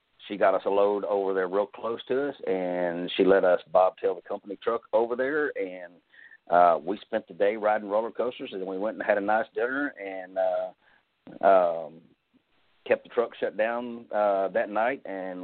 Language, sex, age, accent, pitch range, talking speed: English, male, 40-59, American, 90-115 Hz, 200 wpm